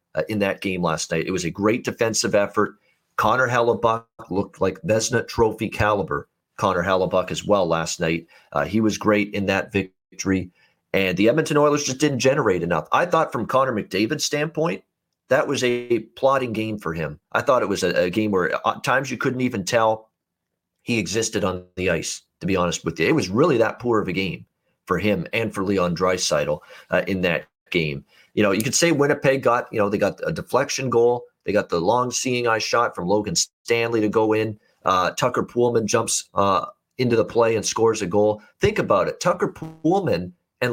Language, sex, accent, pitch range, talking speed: English, male, American, 95-120 Hz, 205 wpm